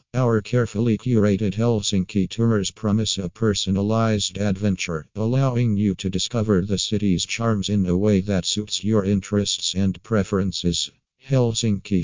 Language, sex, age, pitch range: English, male, 50-69, 95-110 Hz